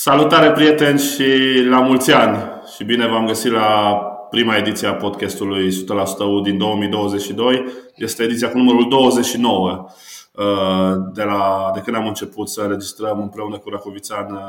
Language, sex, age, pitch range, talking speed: Romanian, male, 20-39, 105-135 Hz, 140 wpm